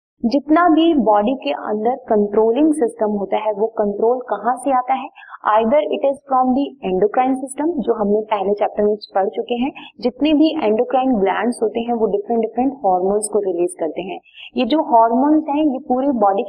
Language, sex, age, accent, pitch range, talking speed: Hindi, female, 30-49, native, 220-280 Hz, 115 wpm